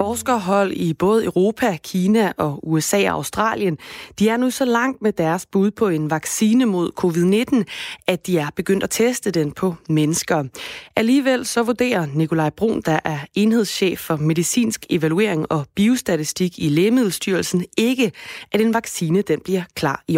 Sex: female